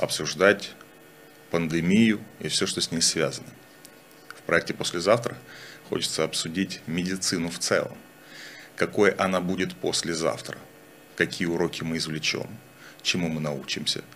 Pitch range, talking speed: 80-105 Hz, 125 wpm